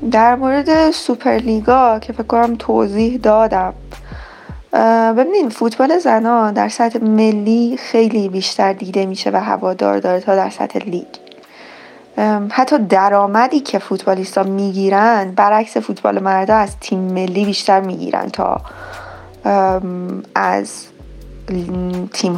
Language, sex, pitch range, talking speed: Persian, female, 195-235 Hz, 115 wpm